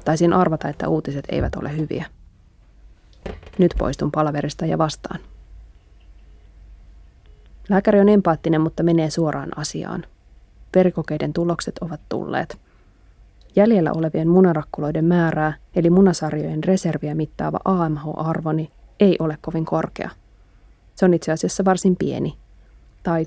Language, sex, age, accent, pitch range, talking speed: Finnish, female, 20-39, native, 155-180 Hz, 110 wpm